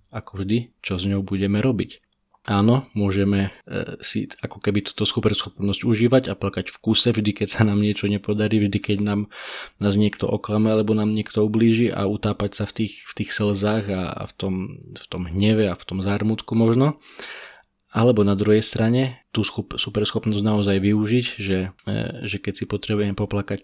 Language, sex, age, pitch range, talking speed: Slovak, male, 20-39, 100-110 Hz, 185 wpm